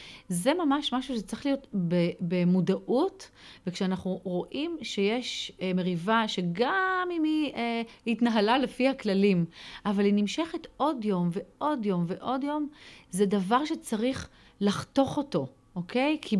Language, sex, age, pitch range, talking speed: Hebrew, female, 30-49, 190-275 Hz, 120 wpm